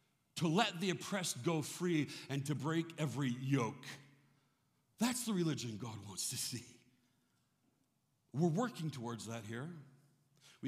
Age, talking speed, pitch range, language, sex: 60-79, 135 wpm, 120-175 Hz, English, male